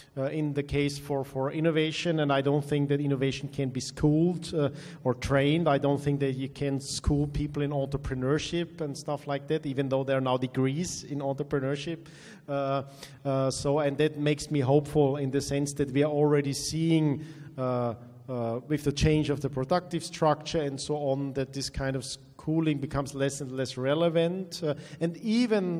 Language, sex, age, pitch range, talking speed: English, male, 40-59, 135-160 Hz, 190 wpm